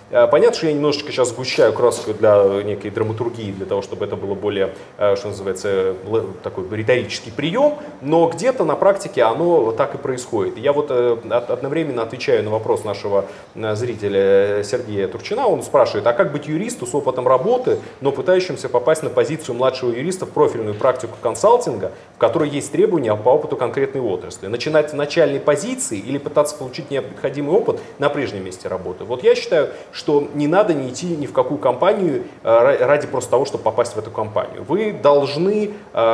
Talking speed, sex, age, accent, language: 170 wpm, male, 30-49, native, Russian